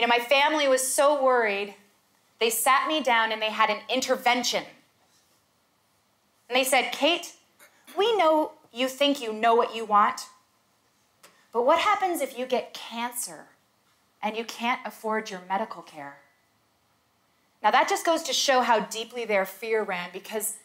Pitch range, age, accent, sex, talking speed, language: 190-260 Hz, 30-49, American, female, 160 wpm, English